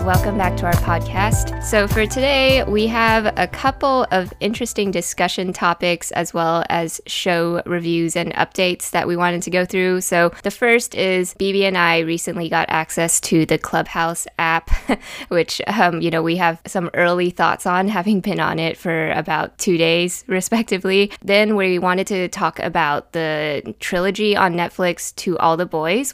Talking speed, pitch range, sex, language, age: 175 wpm, 160-190 Hz, female, English, 10-29